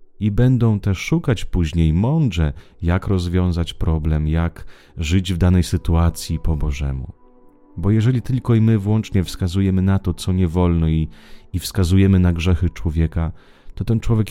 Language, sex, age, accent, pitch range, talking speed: Italian, male, 30-49, Polish, 85-105 Hz, 155 wpm